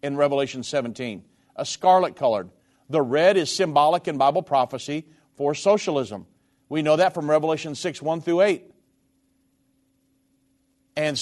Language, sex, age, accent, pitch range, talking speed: English, male, 50-69, American, 145-200 Hz, 135 wpm